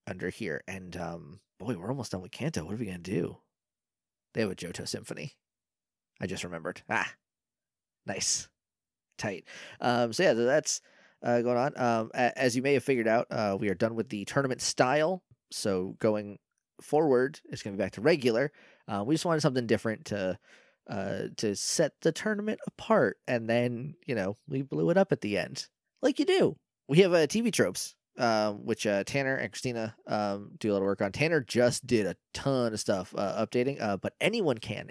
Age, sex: 20-39, male